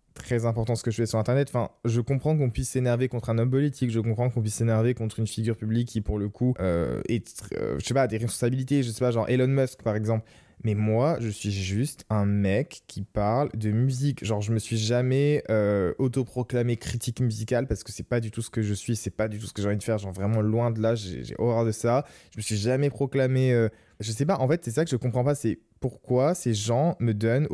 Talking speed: 255 wpm